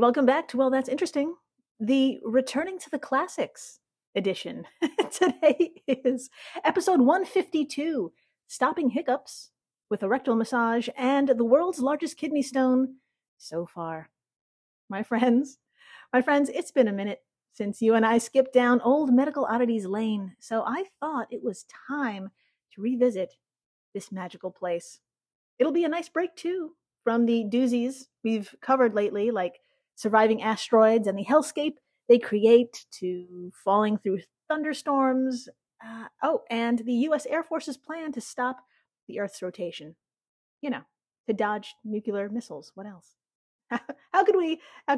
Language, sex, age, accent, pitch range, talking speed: English, female, 30-49, American, 220-285 Hz, 145 wpm